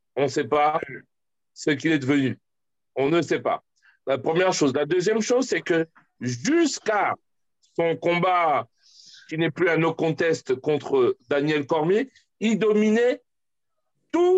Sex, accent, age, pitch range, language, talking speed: male, French, 60-79, 165-235 Hz, French, 145 wpm